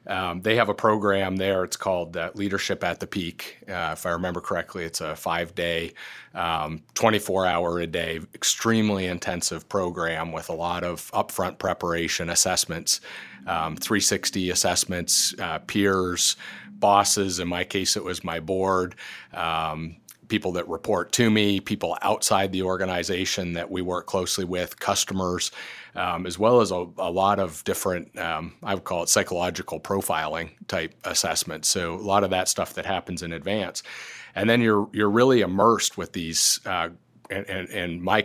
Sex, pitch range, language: male, 85-100 Hz, English